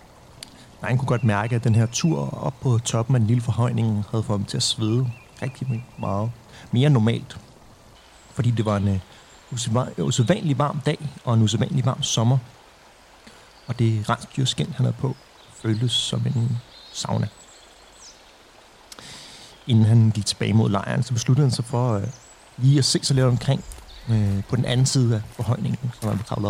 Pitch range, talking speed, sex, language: 110-125 Hz, 175 wpm, male, Danish